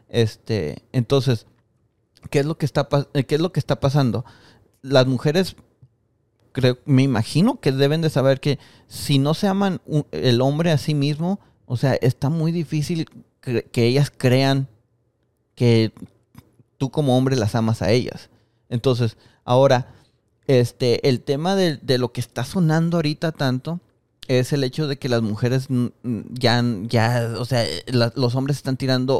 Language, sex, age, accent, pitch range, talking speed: Spanish, male, 30-49, Mexican, 115-140 Hz, 160 wpm